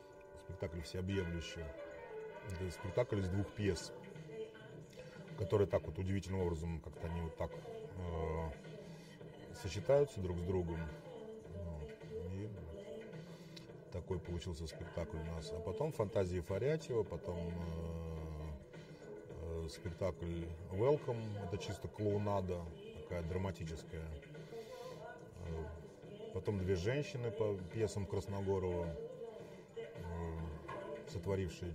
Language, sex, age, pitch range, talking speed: Russian, male, 30-49, 85-115 Hz, 95 wpm